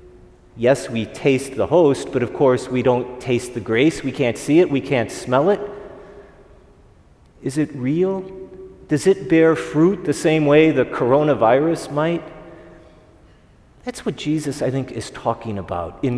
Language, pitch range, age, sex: English, 125-160 Hz, 40-59, male